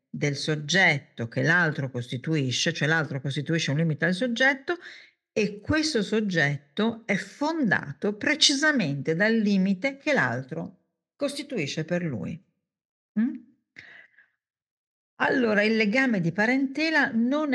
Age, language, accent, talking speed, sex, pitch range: 50-69, Italian, native, 105 wpm, female, 155-240 Hz